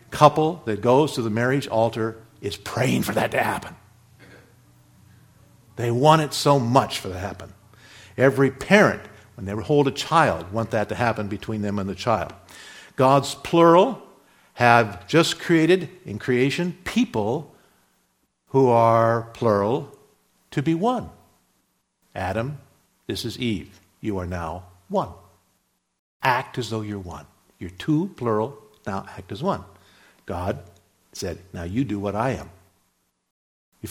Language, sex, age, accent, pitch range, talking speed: English, male, 50-69, American, 105-145 Hz, 145 wpm